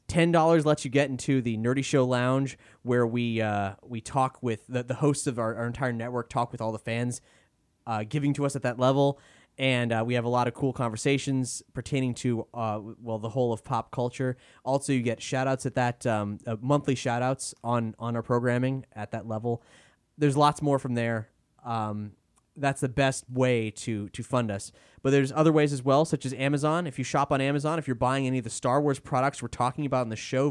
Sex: male